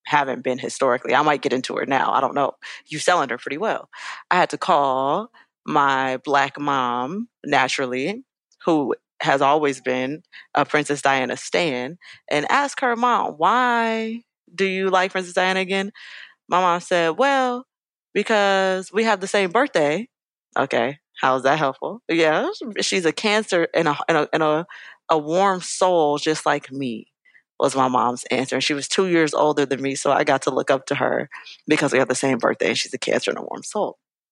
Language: English